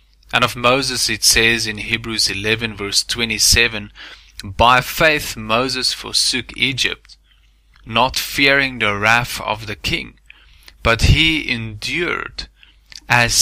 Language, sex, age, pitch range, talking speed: English, male, 20-39, 105-125 Hz, 115 wpm